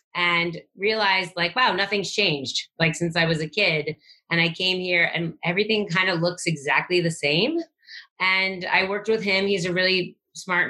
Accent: American